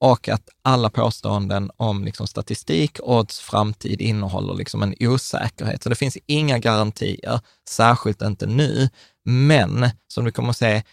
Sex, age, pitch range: male, 20-39, 105-125 Hz